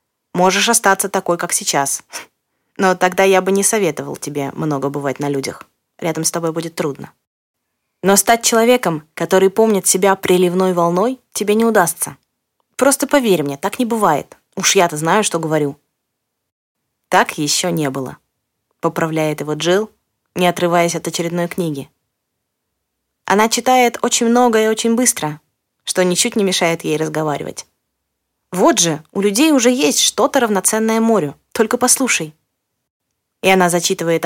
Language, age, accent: Russian, 20-39, native